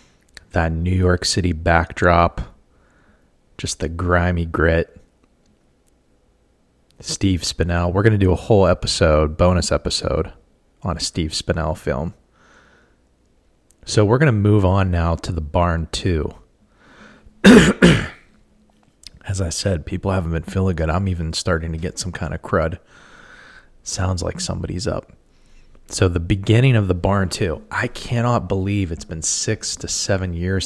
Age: 20-39